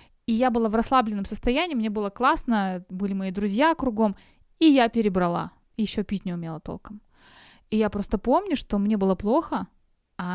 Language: Russian